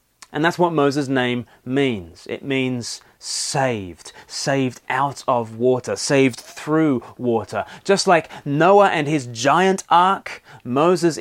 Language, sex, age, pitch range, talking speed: English, male, 30-49, 125-165 Hz, 130 wpm